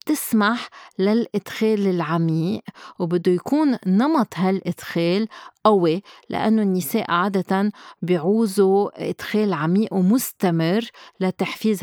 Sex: female